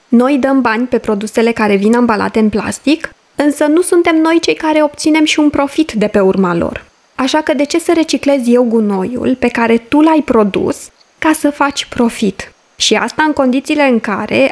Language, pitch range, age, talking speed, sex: Romanian, 215-280 Hz, 20-39, 195 wpm, female